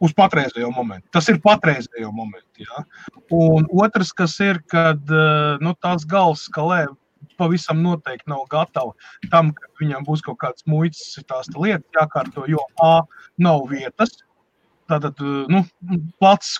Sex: male